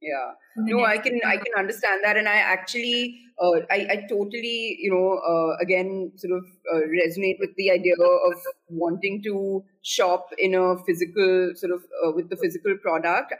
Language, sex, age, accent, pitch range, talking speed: English, female, 30-49, Indian, 165-190 Hz, 180 wpm